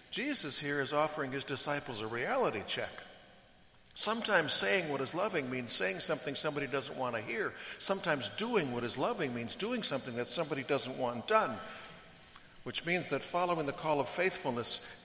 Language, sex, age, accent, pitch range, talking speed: English, male, 60-79, American, 110-150 Hz, 170 wpm